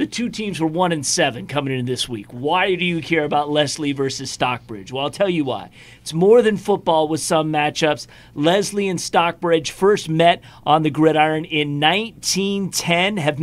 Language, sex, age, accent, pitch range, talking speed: English, male, 40-59, American, 150-185 Hz, 185 wpm